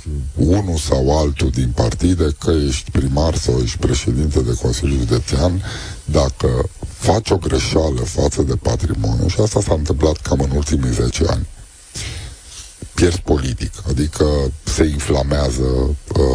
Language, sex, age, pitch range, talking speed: Romanian, male, 50-69, 70-95 Hz, 130 wpm